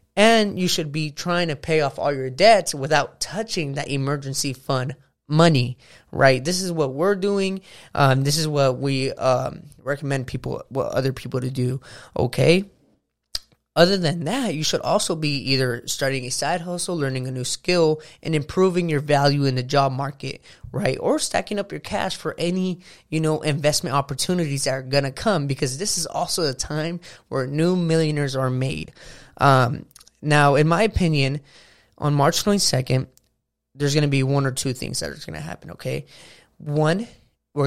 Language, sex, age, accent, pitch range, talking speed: English, male, 20-39, American, 135-170 Hz, 180 wpm